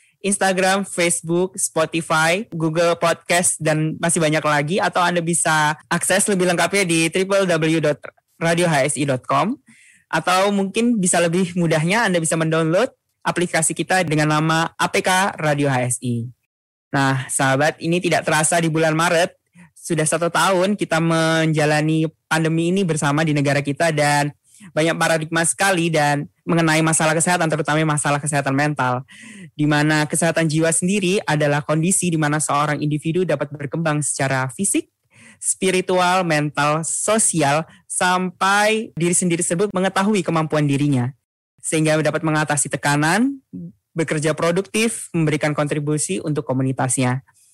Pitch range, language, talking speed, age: 150-180 Hz, Indonesian, 125 wpm, 10-29